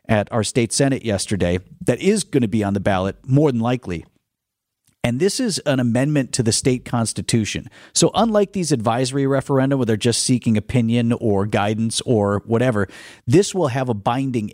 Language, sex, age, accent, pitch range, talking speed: English, male, 40-59, American, 105-135 Hz, 180 wpm